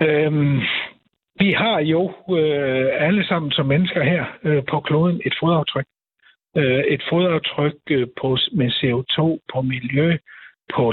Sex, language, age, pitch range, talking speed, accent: male, Danish, 60-79, 130-170 Hz, 105 wpm, native